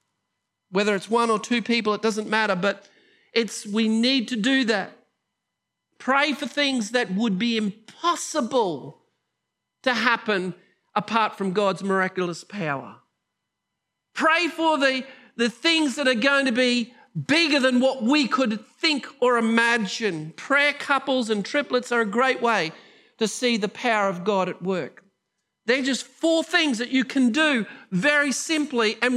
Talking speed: 155 wpm